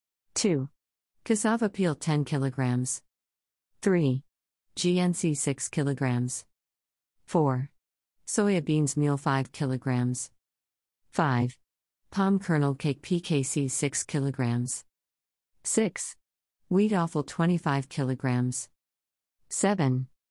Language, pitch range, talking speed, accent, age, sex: English, 110-160 Hz, 100 wpm, American, 50-69, female